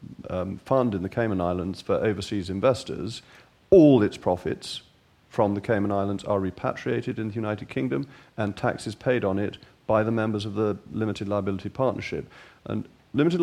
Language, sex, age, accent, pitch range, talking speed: English, male, 40-59, British, 105-135 Hz, 165 wpm